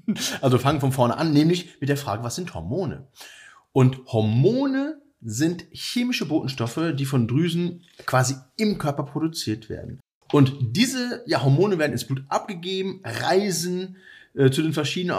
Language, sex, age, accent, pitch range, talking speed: German, male, 40-59, German, 115-155 Hz, 155 wpm